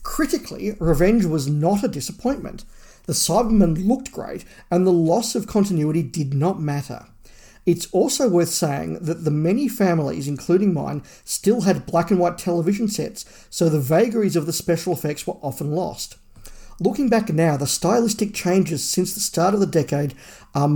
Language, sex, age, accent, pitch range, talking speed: English, male, 50-69, Australian, 155-200 Hz, 170 wpm